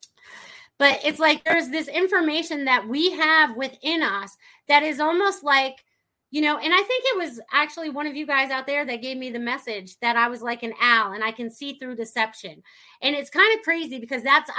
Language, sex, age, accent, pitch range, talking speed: English, female, 30-49, American, 235-315 Hz, 220 wpm